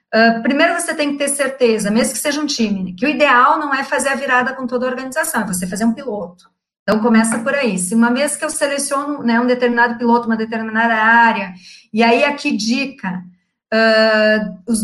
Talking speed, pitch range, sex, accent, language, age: 200 wpm, 225-275 Hz, female, Brazilian, Portuguese, 40-59